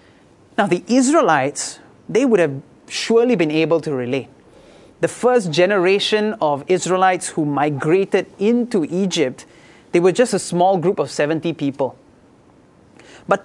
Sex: male